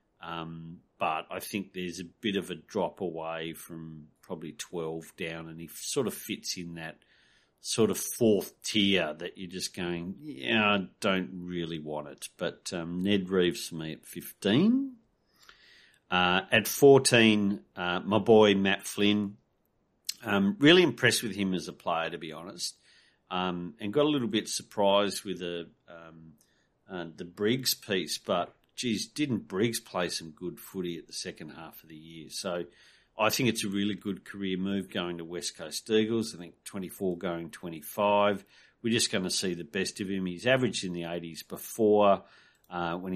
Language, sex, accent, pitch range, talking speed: English, male, Australian, 85-105 Hz, 180 wpm